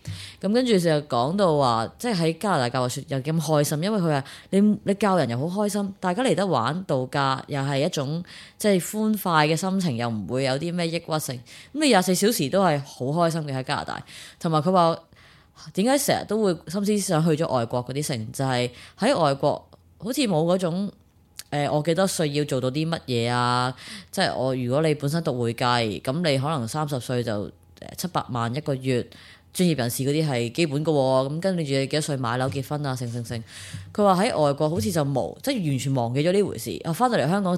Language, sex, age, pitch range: Chinese, female, 20-39, 125-170 Hz